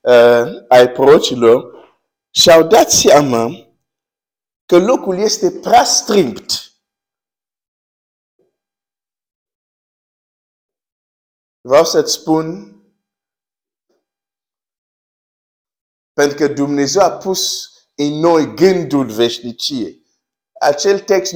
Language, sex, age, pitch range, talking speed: Romanian, male, 50-69, 130-190 Hz, 65 wpm